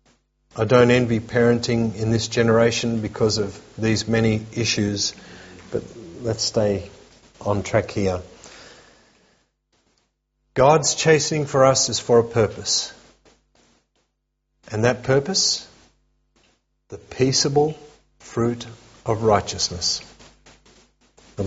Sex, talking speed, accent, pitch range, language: male, 100 wpm, Australian, 95-115 Hz, English